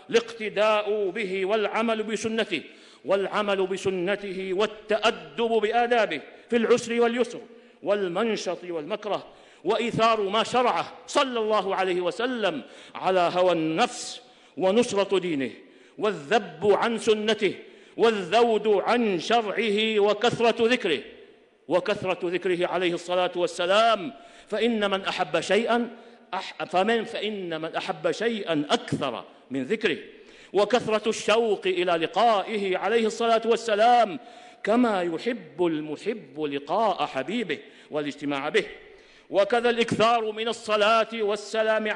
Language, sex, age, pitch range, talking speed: Arabic, male, 50-69, 185-230 Hz, 100 wpm